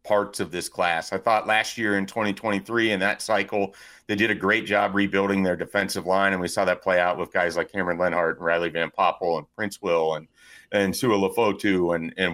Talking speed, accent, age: 235 wpm, American, 40-59